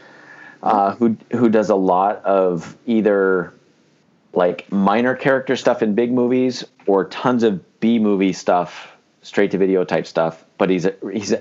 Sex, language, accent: male, English, American